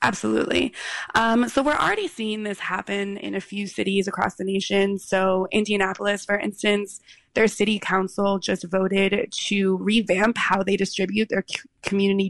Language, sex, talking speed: English, female, 150 wpm